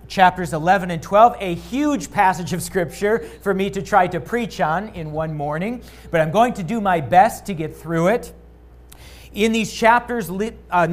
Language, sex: English, male